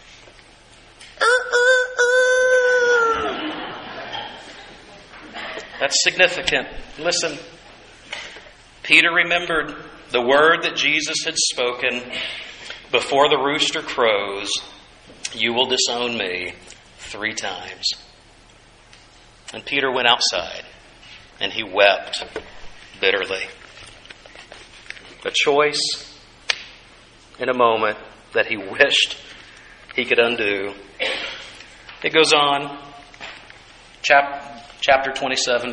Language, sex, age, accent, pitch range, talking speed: English, male, 50-69, American, 120-155 Hz, 80 wpm